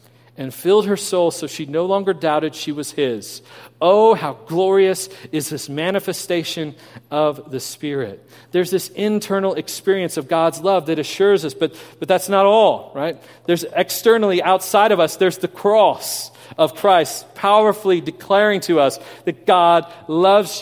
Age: 40-59